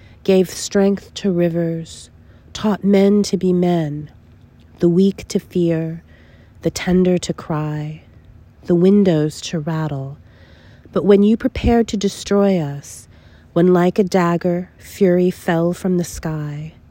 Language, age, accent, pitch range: English, 30-49, American, 160-190 Hz